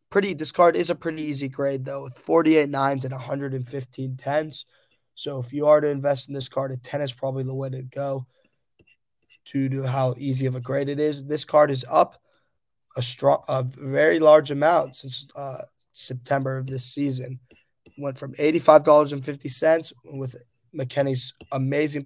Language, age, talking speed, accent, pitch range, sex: English, 20-39, 165 wpm, American, 130-145 Hz, male